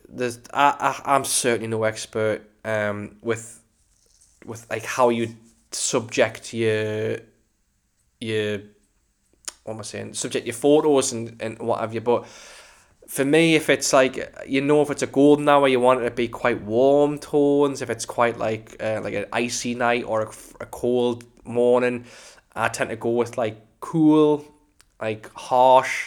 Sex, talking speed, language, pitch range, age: male, 165 wpm, English, 110-130 Hz, 10-29